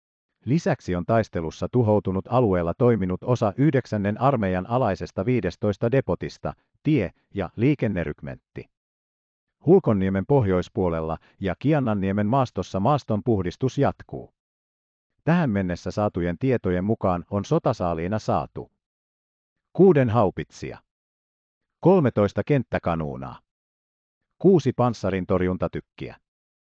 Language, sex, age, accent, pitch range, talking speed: Finnish, male, 50-69, native, 80-120 Hz, 80 wpm